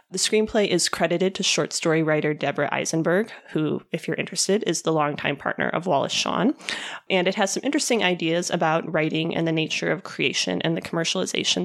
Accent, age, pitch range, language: American, 20-39, 165-190 Hz, English